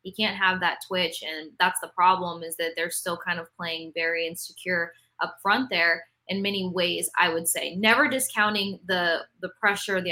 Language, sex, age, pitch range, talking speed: English, female, 20-39, 170-195 Hz, 195 wpm